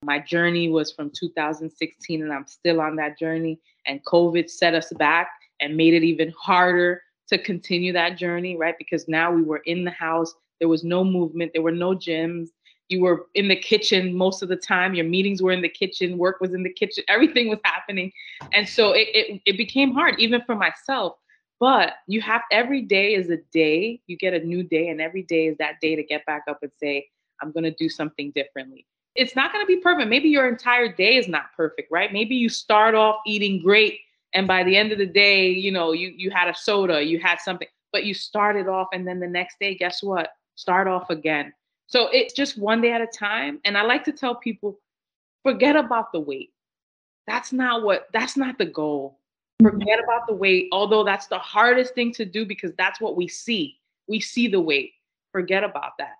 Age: 20-39